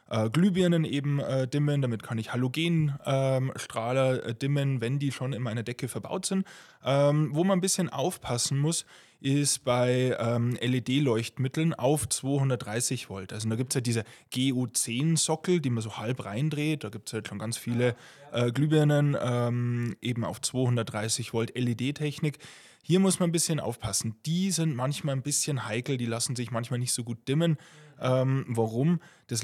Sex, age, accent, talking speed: male, 20-39, German, 165 wpm